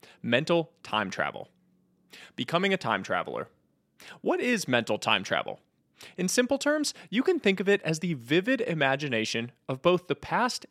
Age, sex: 20-39, male